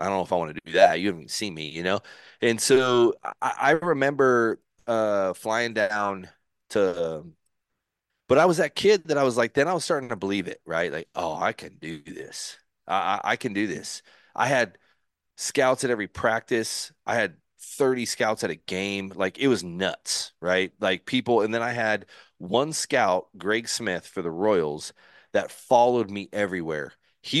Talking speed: 195 wpm